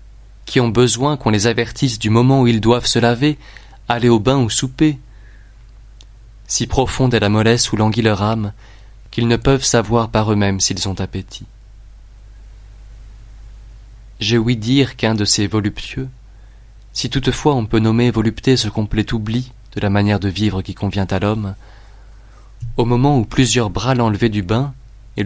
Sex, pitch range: male, 105-115 Hz